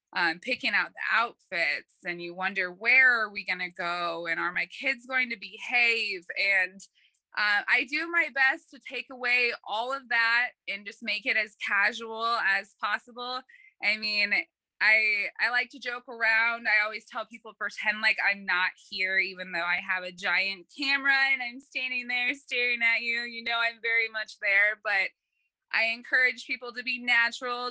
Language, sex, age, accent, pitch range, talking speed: English, female, 20-39, American, 205-245 Hz, 185 wpm